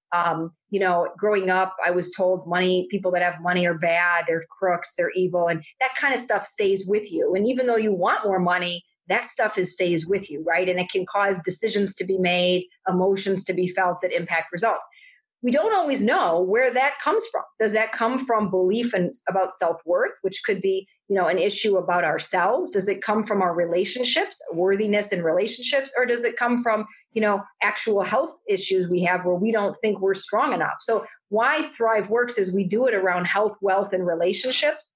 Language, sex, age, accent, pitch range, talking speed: English, female, 40-59, American, 185-220 Hz, 200 wpm